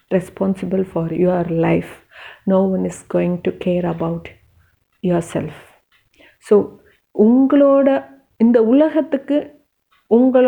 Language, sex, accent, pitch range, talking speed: Tamil, female, native, 195-250 Hz, 120 wpm